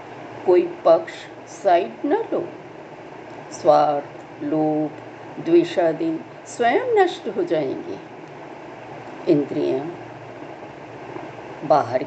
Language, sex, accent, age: Hindi, female, native, 60-79